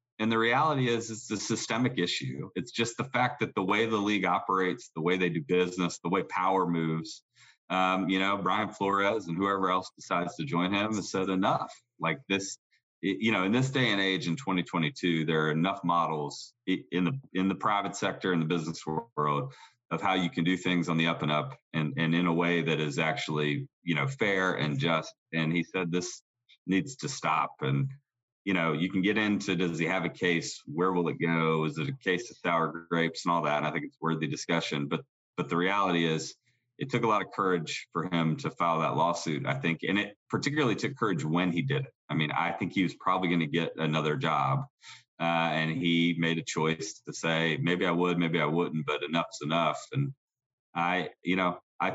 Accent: American